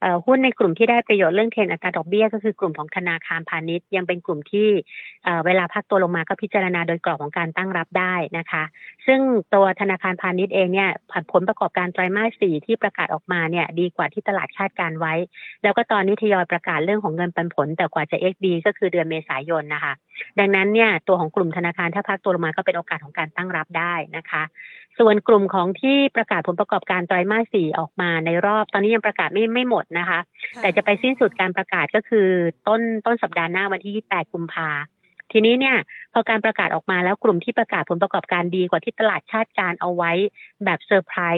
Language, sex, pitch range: Thai, female, 170-210 Hz